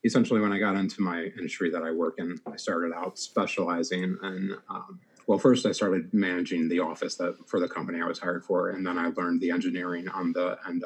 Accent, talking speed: American, 225 wpm